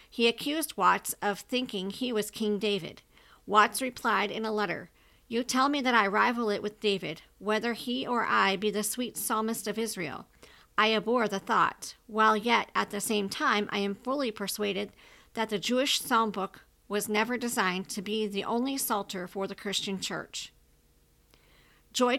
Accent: American